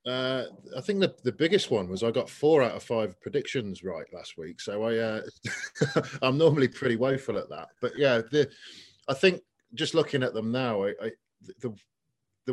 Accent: British